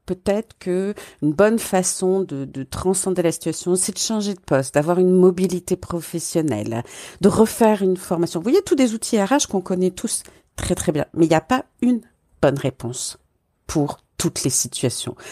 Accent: French